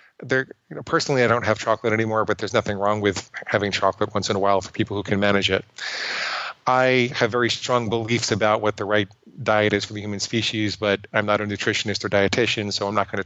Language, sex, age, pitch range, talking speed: English, male, 40-59, 100-125 Hz, 240 wpm